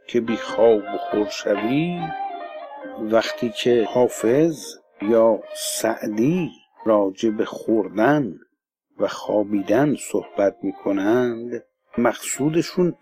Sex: male